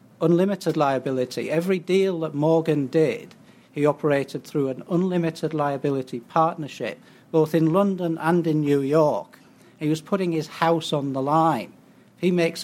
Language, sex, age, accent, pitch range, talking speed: English, male, 60-79, British, 135-170 Hz, 145 wpm